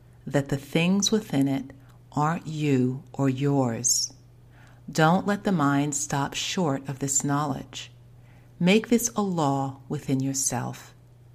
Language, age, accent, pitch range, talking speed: English, 50-69, American, 120-150 Hz, 125 wpm